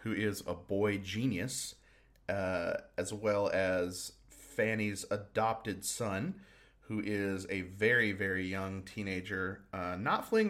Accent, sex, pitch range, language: American, male, 95-110 Hz, English